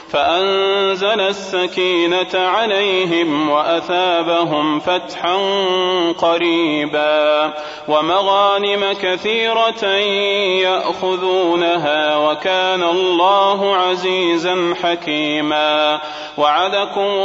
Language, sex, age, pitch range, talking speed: Arabic, male, 30-49, 170-200 Hz, 50 wpm